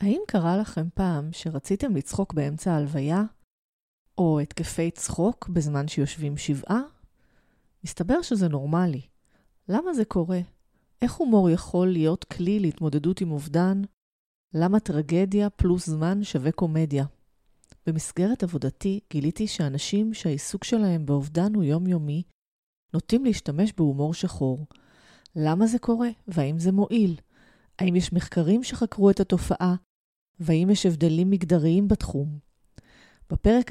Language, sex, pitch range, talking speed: Hebrew, female, 155-200 Hz, 115 wpm